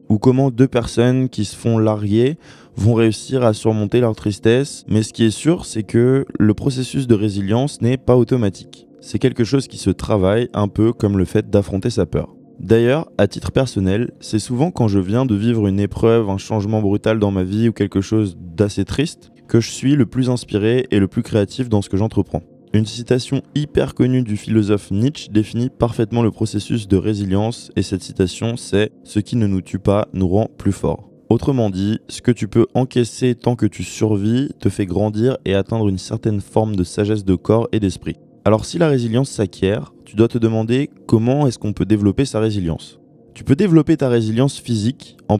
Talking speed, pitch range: 205 wpm, 100-120 Hz